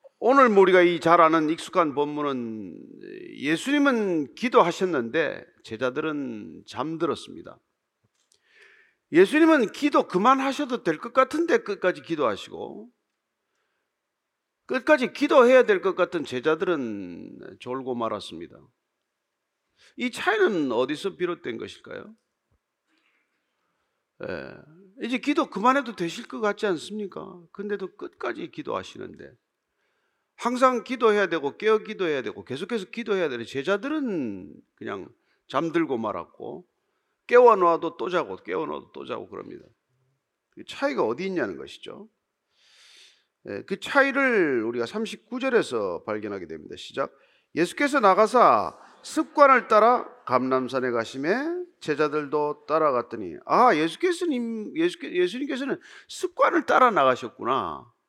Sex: male